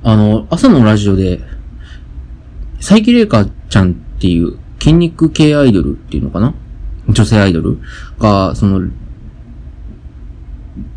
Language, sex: Japanese, male